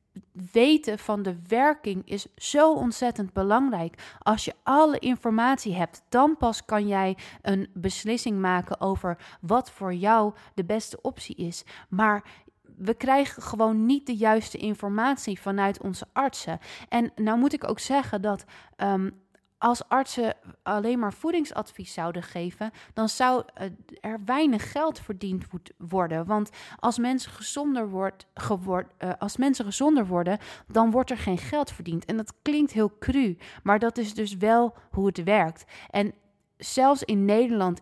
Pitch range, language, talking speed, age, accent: 190-240 Hz, Dutch, 145 wpm, 20-39, Dutch